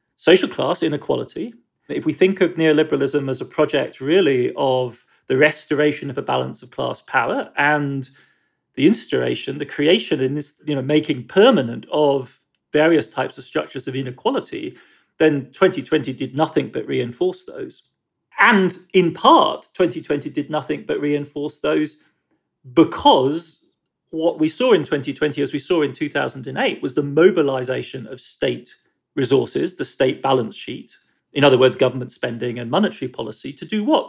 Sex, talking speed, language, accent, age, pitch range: male, 155 wpm, English, British, 40-59, 140-195 Hz